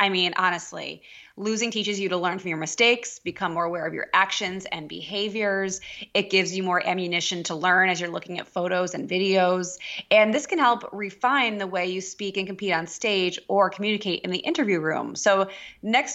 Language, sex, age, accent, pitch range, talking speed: English, female, 20-39, American, 180-210 Hz, 200 wpm